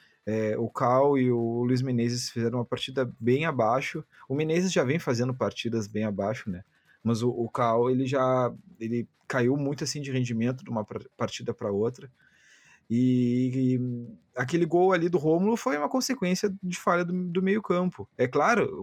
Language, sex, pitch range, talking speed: Portuguese, male, 115-155 Hz, 180 wpm